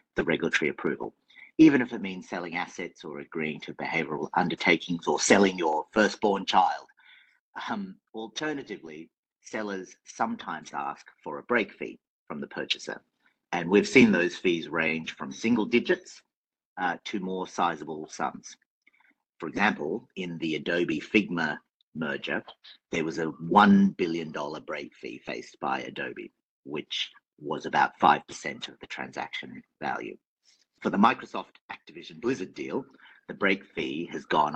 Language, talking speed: English, 145 wpm